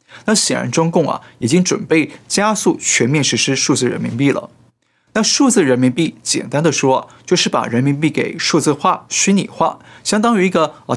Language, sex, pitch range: Chinese, male, 135-185 Hz